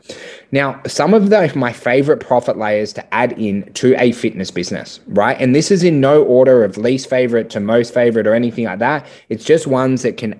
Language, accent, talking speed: English, Australian, 210 wpm